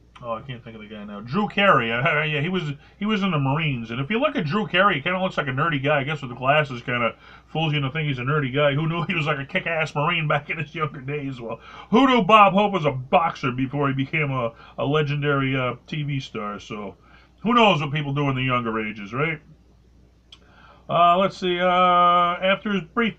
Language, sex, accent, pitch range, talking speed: English, male, American, 125-175 Hz, 250 wpm